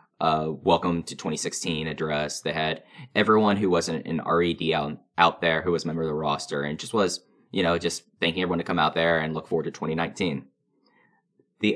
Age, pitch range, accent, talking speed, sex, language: 10-29, 85-100 Hz, American, 210 wpm, male, English